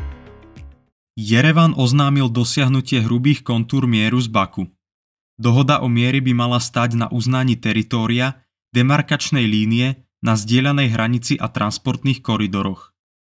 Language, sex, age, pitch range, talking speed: Czech, male, 20-39, 115-135 Hz, 115 wpm